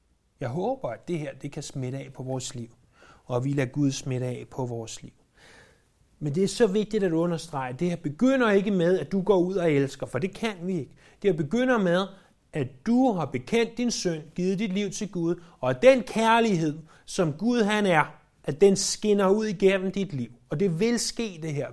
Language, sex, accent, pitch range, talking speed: Danish, male, native, 135-200 Hz, 225 wpm